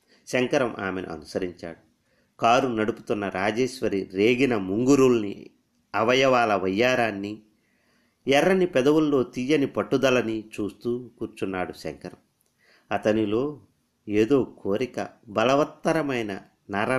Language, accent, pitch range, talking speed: Telugu, native, 100-130 Hz, 80 wpm